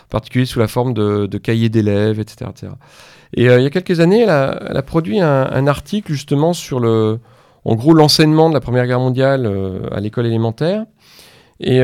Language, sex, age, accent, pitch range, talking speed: French, male, 40-59, French, 115-150 Hz, 210 wpm